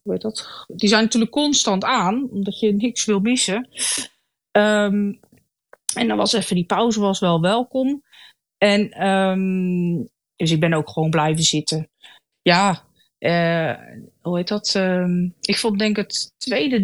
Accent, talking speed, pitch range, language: Dutch, 155 wpm, 200-235 Hz, Dutch